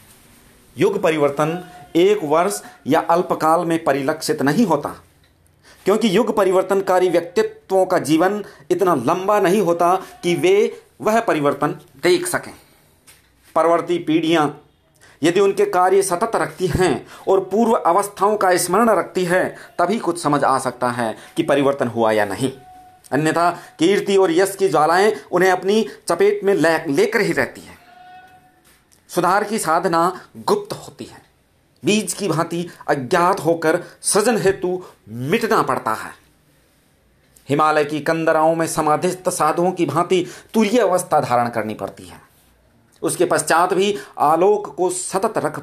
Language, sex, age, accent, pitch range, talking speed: Hindi, male, 40-59, native, 150-195 Hz, 135 wpm